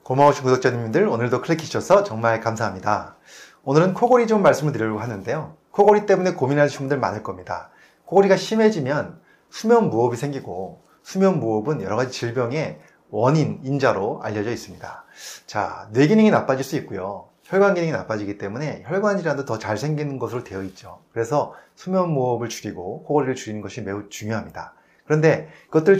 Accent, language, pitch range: native, Korean, 115-160 Hz